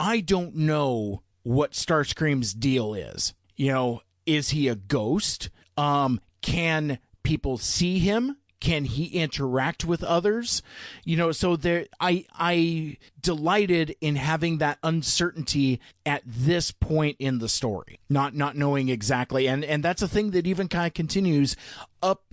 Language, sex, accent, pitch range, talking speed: English, male, American, 135-170 Hz, 150 wpm